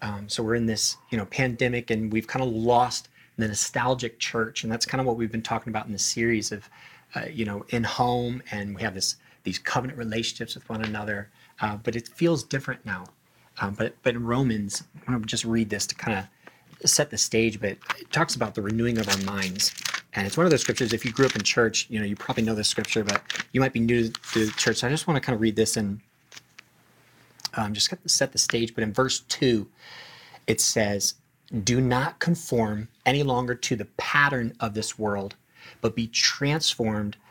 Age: 30-49